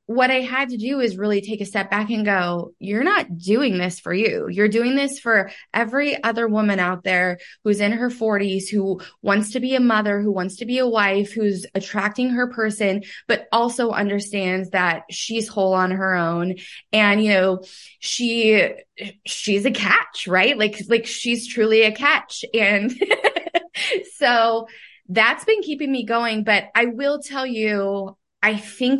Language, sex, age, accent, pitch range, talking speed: English, female, 20-39, American, 185-230 Hz, 175 wpm